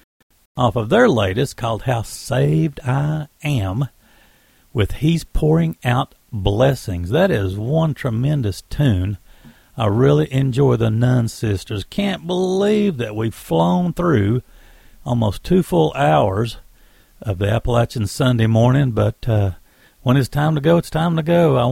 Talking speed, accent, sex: 145 wpm, American, male